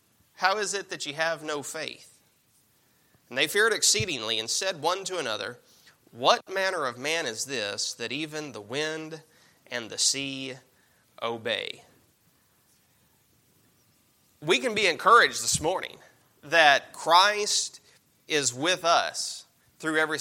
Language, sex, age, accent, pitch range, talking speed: English, male, 30-49, American, 140-190 Hz, 130 wpm